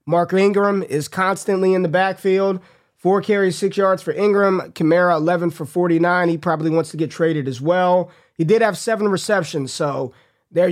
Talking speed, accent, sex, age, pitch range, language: 180 wpm, American, male, 30-49, 165-195 Hz, English